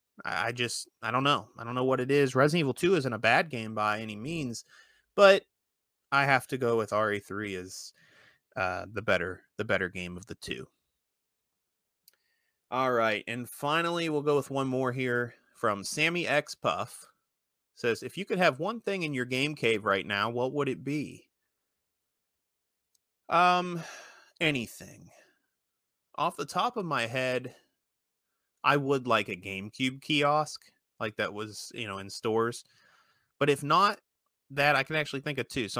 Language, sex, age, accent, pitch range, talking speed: English, male, 30-49, American, 110-140 Hz, 170 wpm